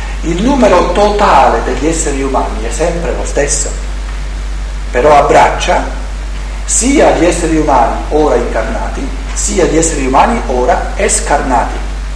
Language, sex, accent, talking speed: Italian, male, native, 120 wpm